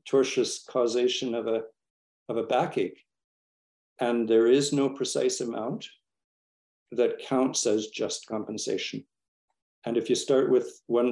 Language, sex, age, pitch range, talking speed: English, male, 50-69, 115-135 Hz, 130 wpm